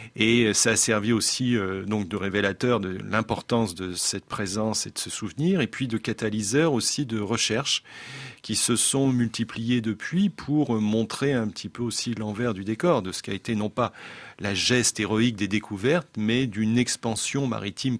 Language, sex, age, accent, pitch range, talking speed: French, male, 40-59, French, 105-130 Hz, 185 wpm